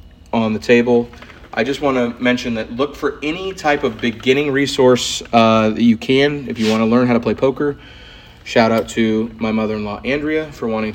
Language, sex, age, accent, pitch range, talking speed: English, male, 30-49, American, 105-125 Hz, 205 wpm